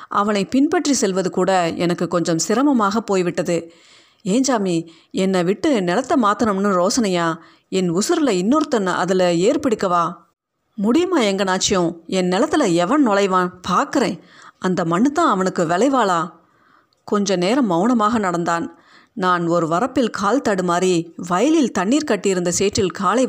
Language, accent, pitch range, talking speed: Tamil, native, 180-240 Hz, 115 wpm